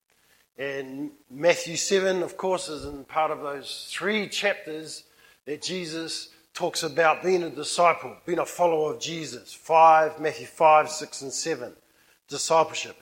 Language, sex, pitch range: English, male, 155-200 Hz